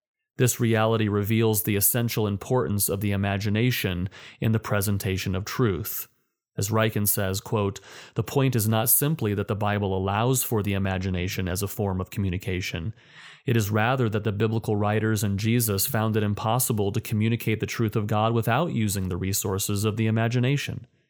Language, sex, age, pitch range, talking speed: English, male, 30-49, 100-120 Hz, 170 wpm